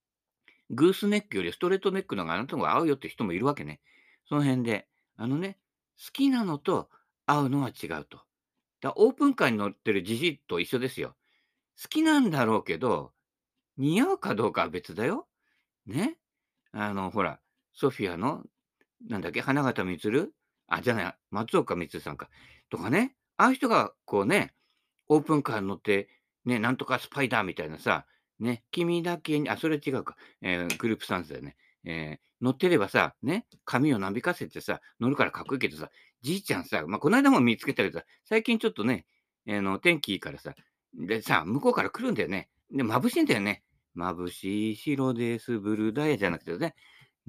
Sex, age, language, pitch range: male, 50-69, Japanese, 105-175 Hz